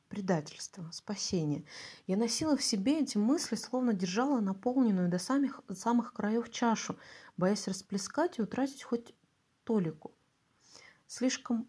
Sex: female